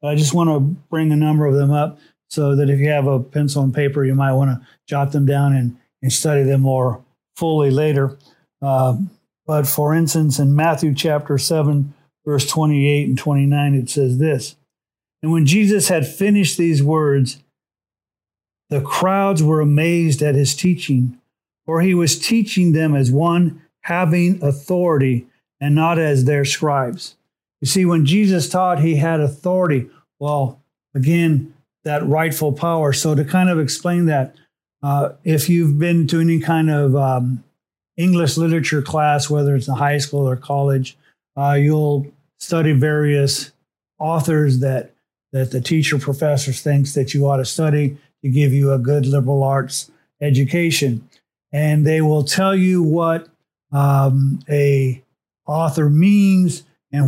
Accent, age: American, 50-69